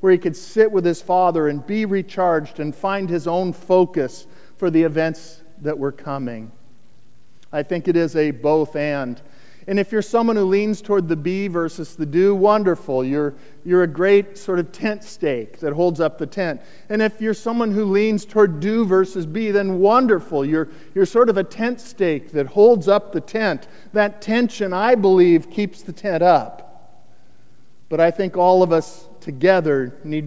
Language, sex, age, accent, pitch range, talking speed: English, male, 50-69, American, 150-200 Hz, 185 wpm